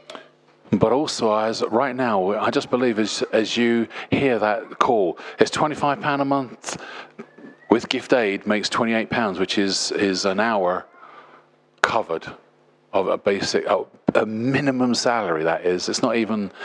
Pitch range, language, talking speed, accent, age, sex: 100-125 Hz, English, 160 wpm, British, 40-59, male